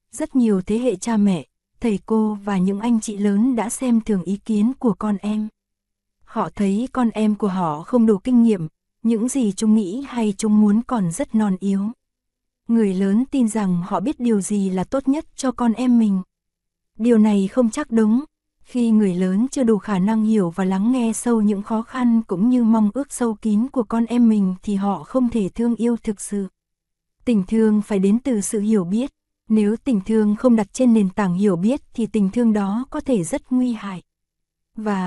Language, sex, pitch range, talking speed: Vietnamese, female, 205-240 Hz, 210 wpm